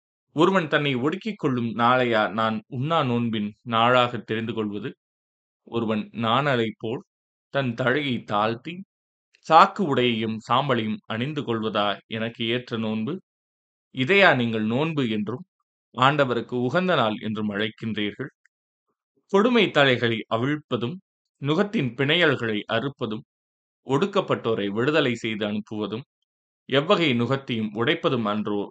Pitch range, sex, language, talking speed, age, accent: 110-135 Hz, male, Tamil, 100 wpm, 20-39, native